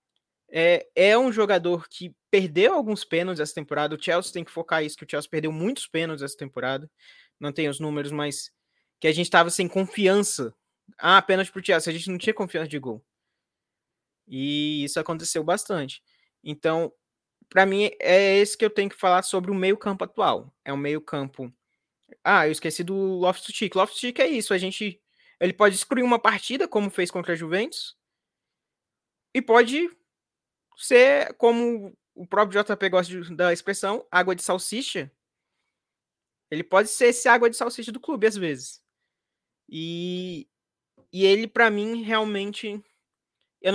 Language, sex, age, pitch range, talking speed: Portuguese, male, 20-39, 165-215 Hz, 170 wpm